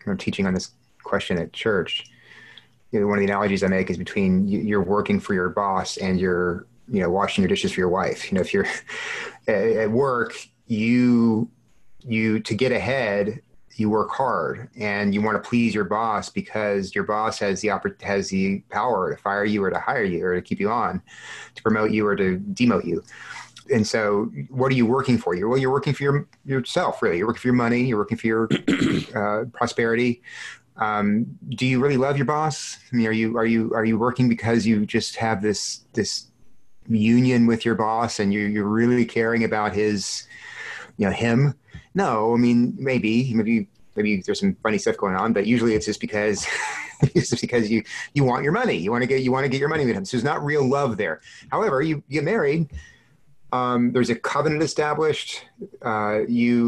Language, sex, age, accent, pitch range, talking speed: English, male, 30-49, American, 105-135 Hz, 210 wpm